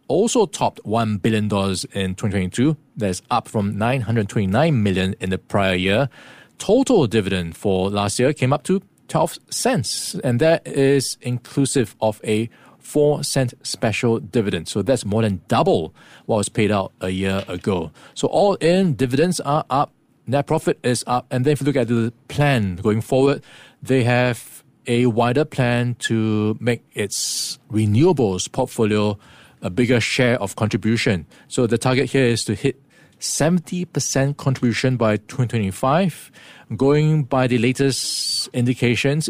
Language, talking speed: English, 150 wpm